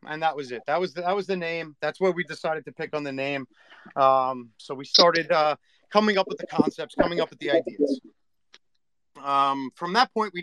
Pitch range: 140-185 Hz